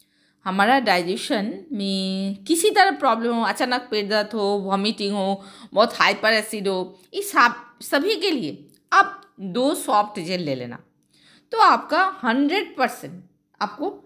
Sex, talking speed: female, 145 wpm